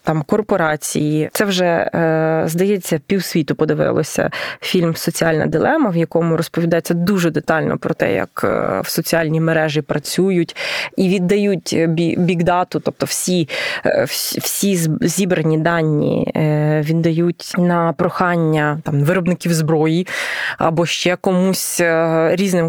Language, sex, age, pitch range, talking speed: Ukrainian, female, 20-39, 160-195 Hz, 110 wpm